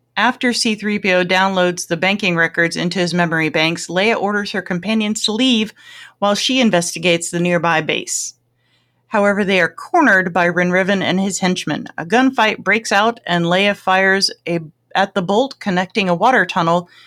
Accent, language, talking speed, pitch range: American, English, 160 wpm, 175-225 Hz